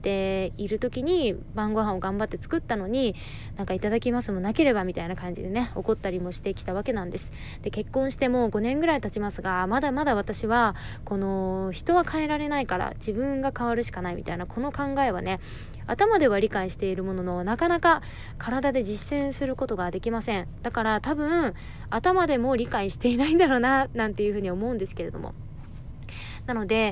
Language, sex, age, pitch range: Japanese, female, 20-39, 200-275 Hz